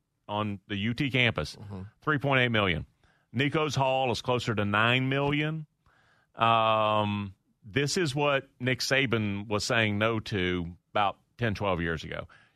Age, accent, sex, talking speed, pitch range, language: 40-59, American, male, 130 wpm, 120-155 Hz, English